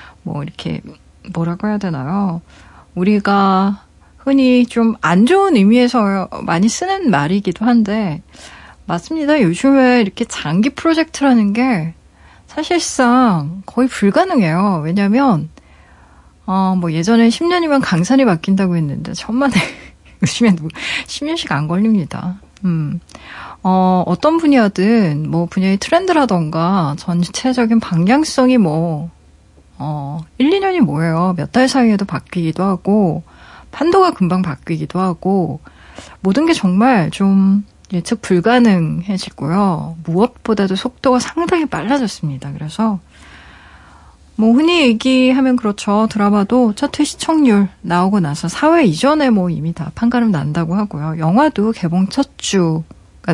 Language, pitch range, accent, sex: Korean, 170-245 Hz, native, female